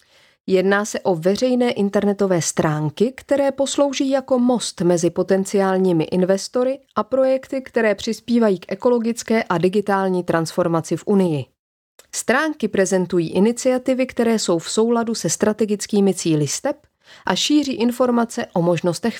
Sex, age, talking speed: female, 30-49, 125 wpm